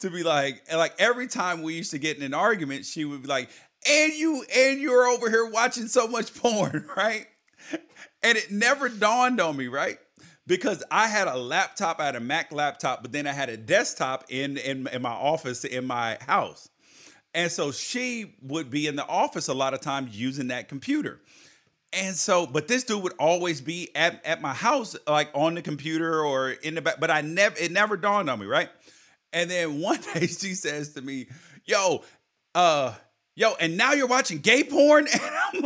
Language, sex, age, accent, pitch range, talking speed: English, male, 40-59, American, 150-230 Hz, 205 wpm